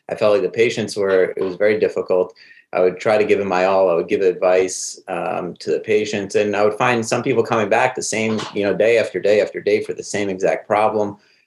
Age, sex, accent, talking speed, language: 30-49, male, American, 250 wpm, English